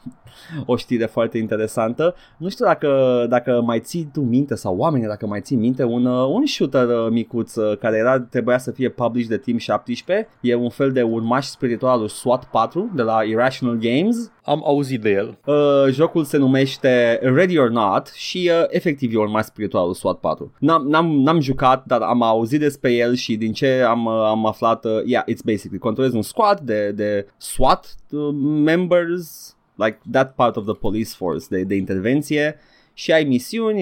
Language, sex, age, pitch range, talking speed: Romanian, male, 20-39, 110-145 Hz, 165 wpm